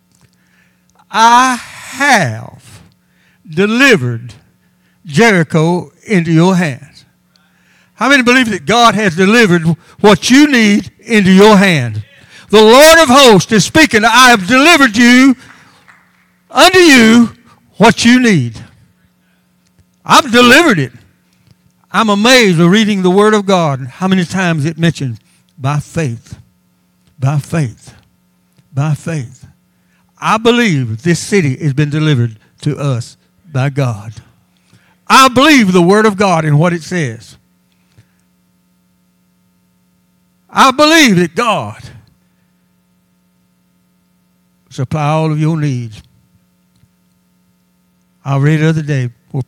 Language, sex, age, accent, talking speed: English, male, 60-79, American, 115 wpm